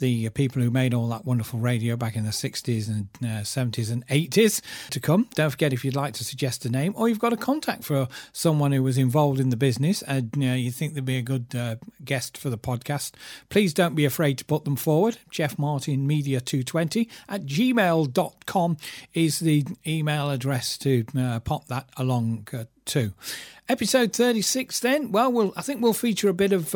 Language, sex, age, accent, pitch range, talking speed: English, male, 40-59, British, 125-170 Hz, 205 wpm